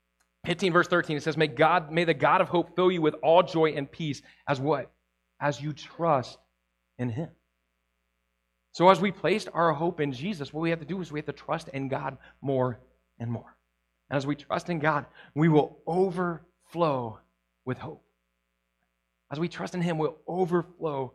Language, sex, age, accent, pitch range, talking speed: English, male, 30-49, American, 110-155 Hz, 190 wpm